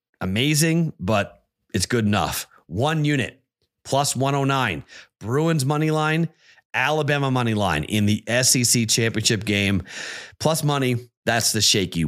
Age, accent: 30-49, American